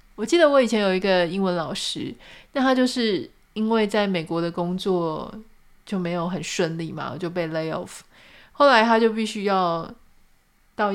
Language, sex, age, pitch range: Chinese, female, 20-39, 175-225 Hz